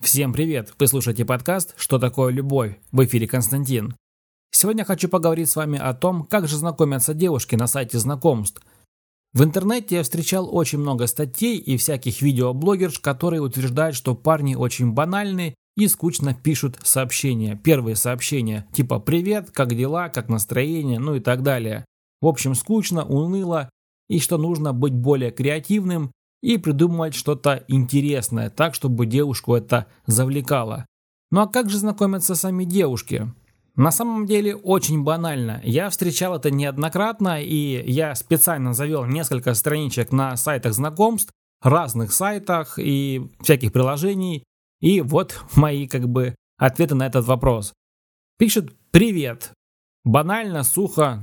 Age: 20-39